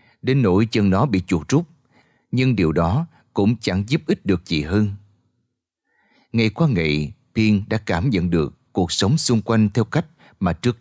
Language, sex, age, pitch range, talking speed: Vietnamese, male, 30-49, 95-150 Hz, 185 wpm